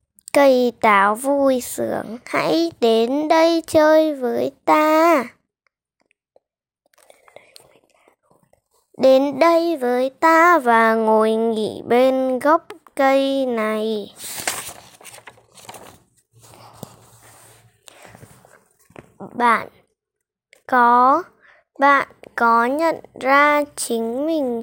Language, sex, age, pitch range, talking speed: Vietnamese, female, 10-29, 235-310 Hz, 70 wpm